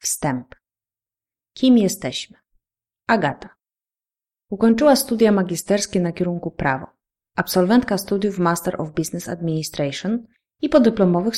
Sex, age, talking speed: female, 30-49, 95 wpm